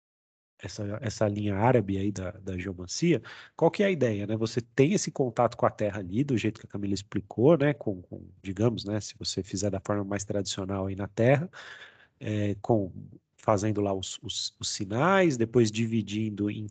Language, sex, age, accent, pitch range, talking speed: Portuguese, male, 40-59, Brazilian, 105-145 Hz, 195 wpm